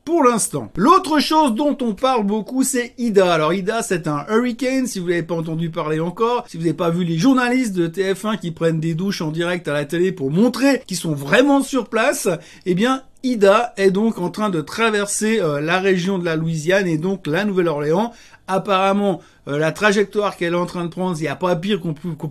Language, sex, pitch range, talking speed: French, male, 165-225 Hz, 225 wpm